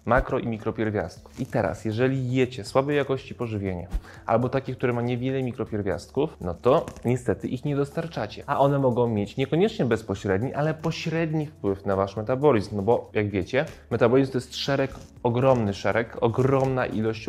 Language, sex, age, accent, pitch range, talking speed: Polish, male, 20-39, native, 100-130 Hz, 160 wpm